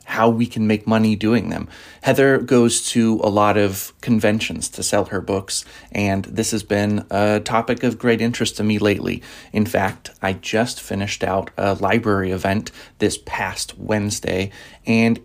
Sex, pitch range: male, 100-120 Hz